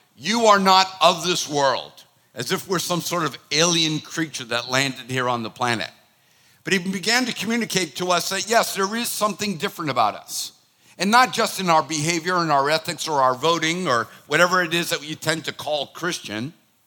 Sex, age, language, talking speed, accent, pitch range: male, 50-69, English, 205 wpm, American, 145-190 Hz